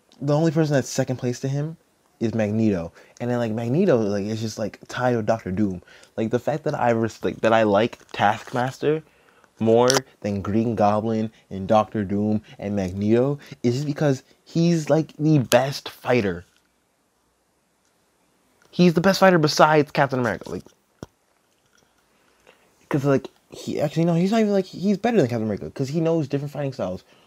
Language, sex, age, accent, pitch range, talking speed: English, male, 20-39, American, 105-140 Hz, 170 wpm